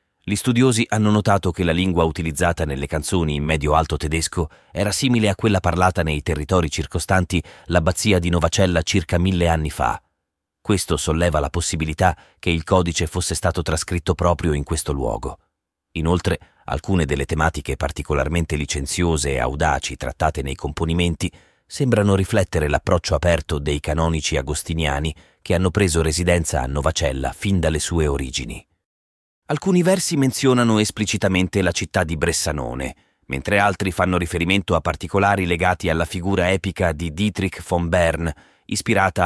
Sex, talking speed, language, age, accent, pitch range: male, 140 wpm, Italian, 30-49, native, 80-95 Hz